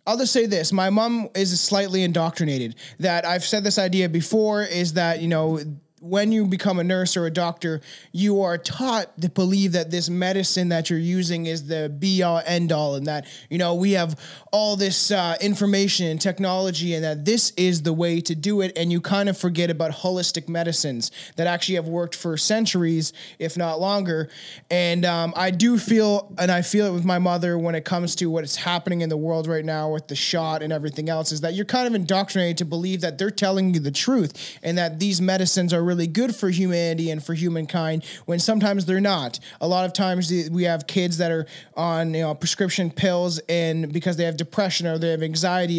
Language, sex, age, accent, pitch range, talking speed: English, male, 20-39, American, 165-195 Hz, 220 wpm